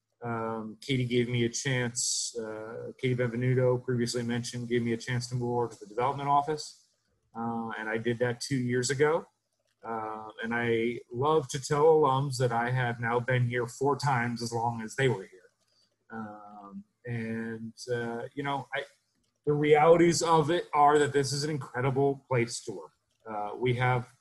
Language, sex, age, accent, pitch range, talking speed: English, male, 30-49, American, 115-140 Hz, 180 wpm